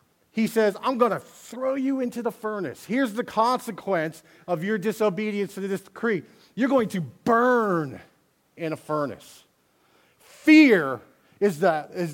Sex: male